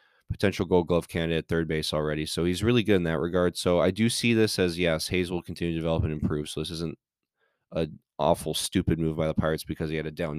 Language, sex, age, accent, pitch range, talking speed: English, male, 20-39, American, 80-95 Hz, 255 wpm